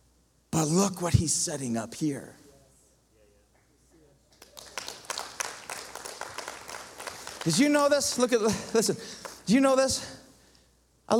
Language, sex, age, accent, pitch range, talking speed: English, male, 40-59, American, 160-215 Hz, 100 wpm